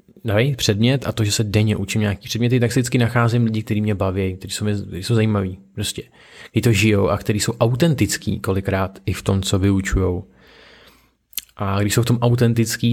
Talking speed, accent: 190 wpm, native